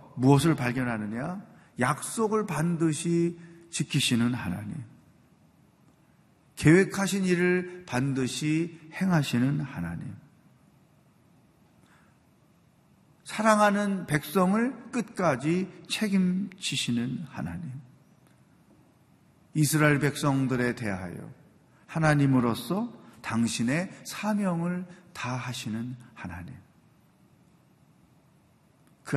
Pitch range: 120-170 Hz